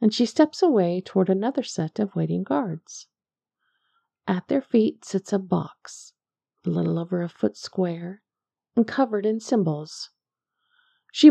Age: 50-69